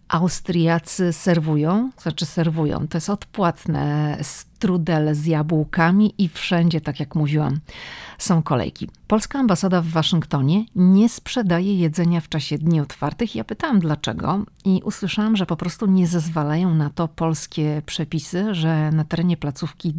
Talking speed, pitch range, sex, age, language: 140 wpm, 155-190 Hz, female, 40-59, Polish